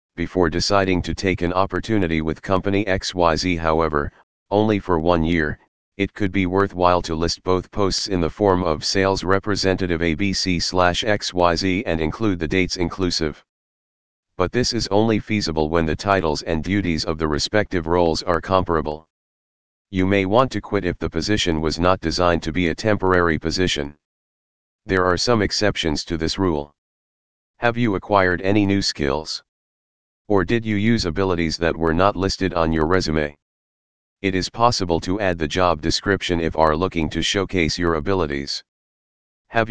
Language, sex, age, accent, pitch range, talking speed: English, male, 40-59, American, 80-95 Hz, 165 wpm